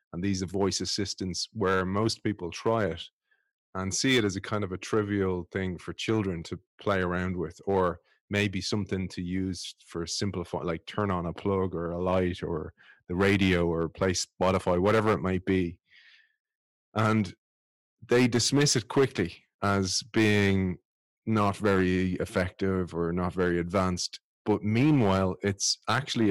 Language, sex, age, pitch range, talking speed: English, male, 30-49, 90-105 Hz, 155 wpm